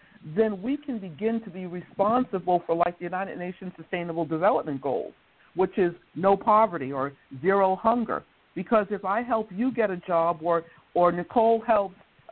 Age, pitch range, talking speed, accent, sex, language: 50-69, 170-215 Hz, 165 wpm, American, female, English